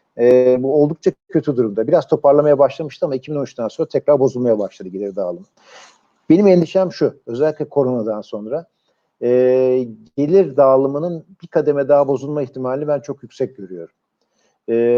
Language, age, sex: Turkish, 50-69, male